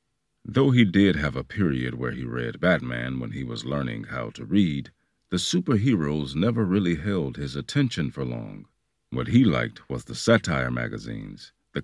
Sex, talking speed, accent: male, 170 wpm, American